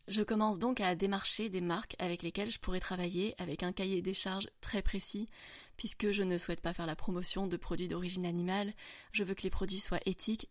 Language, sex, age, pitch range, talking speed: French, female, 20-39, 180-205 Hz, 215 wpm